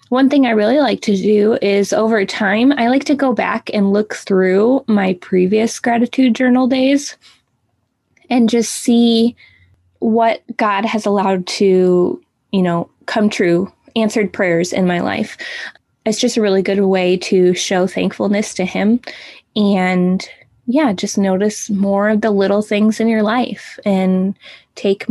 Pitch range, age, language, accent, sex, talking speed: 190-245 Hz, 20-39, English, American, female, 155 wpm